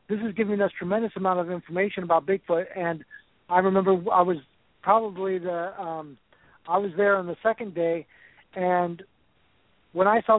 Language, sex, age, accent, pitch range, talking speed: English, male, 60-79, American, 175-205 Hz, 170 wpm